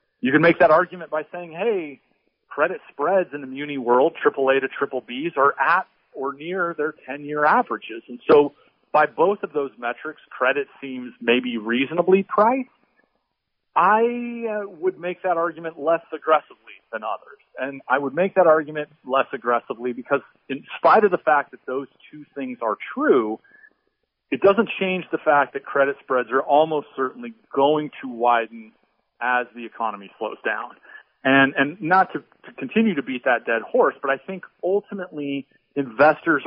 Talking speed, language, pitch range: 165 wpm, English, 130-175 Hz